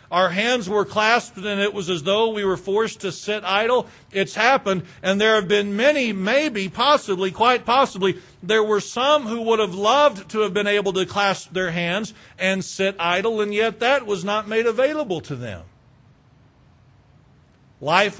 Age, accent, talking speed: 50-69, American, 180 wpm